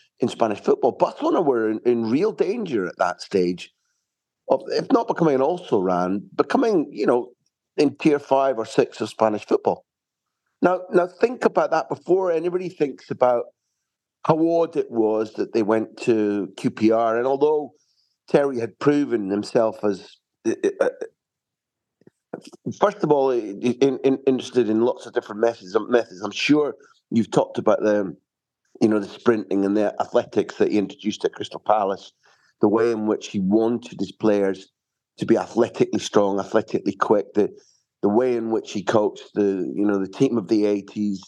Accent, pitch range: British, 105-150 Hz